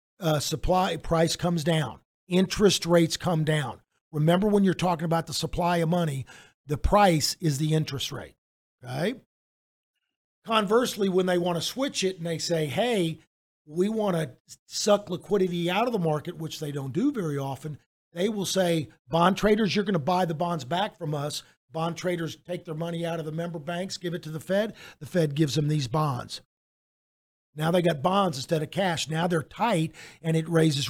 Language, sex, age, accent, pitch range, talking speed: English, male, 50-69, American, 155-185 Hz, 190 wpm